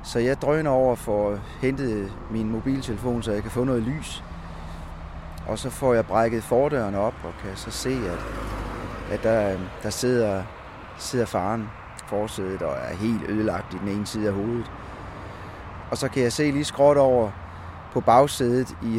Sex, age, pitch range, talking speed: male, 30-49, 95-125 Hz, 175 wpm